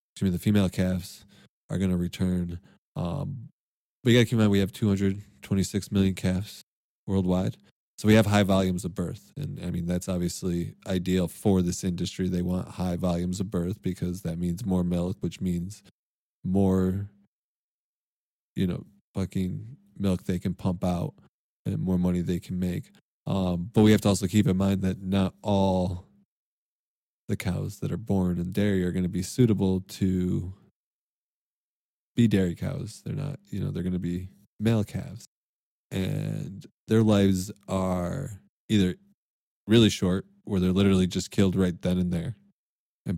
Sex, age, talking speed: male, 20-39, 170 wpm